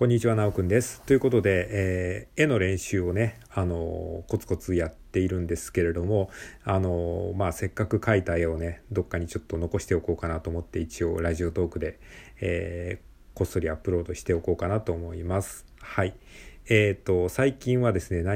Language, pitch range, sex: Japanese, 85-105 Hz, male